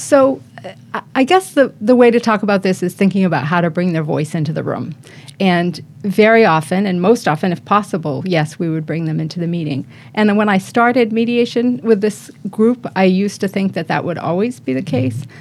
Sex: female